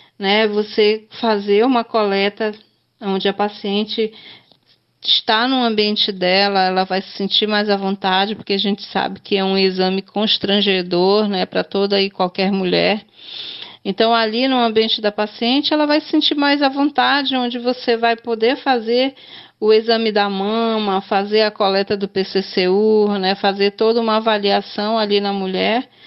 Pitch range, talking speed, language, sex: 195-235 Hz, 160 wpm, Portuguese, female